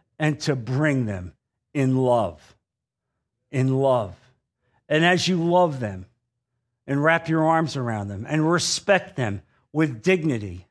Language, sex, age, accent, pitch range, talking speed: English, male, 50-69, American, 120-165 Hz, 135 wpm